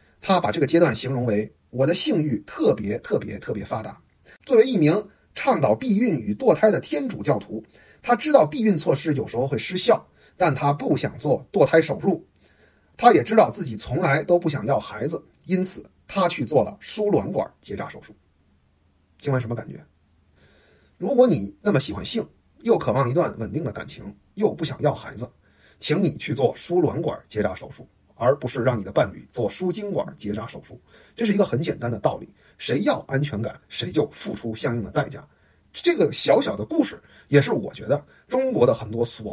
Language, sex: Chinese, male